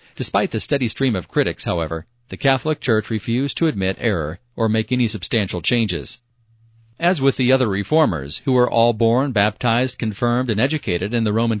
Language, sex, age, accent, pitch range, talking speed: English, male, 40-59, American, 105-130 Hz, 180 wpm